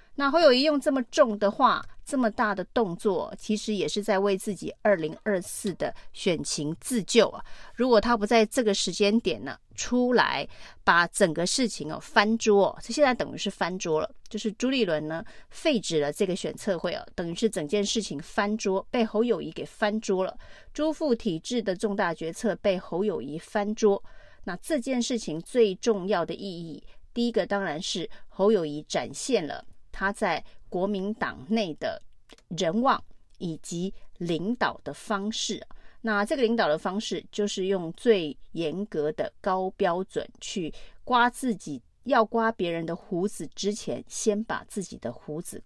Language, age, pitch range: Chinese, 30-49, 175-225 Hz